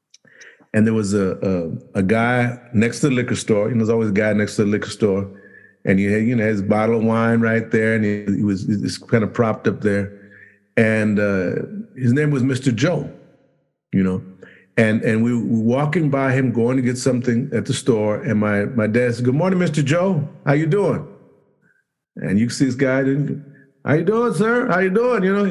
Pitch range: 110-145 Hz